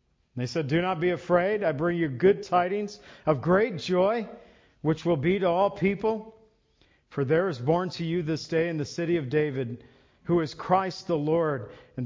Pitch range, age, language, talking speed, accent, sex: 155-195 Hz, 50-69, English, 195 wpm, American, male